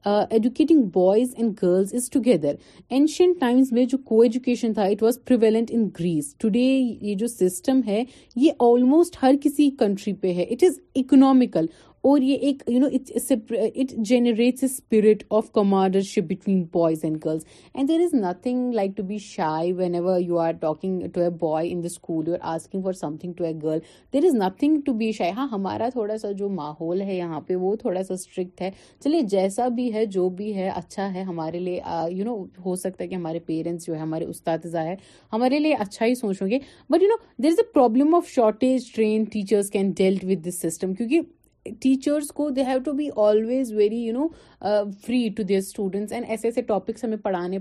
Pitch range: 185-250 Hz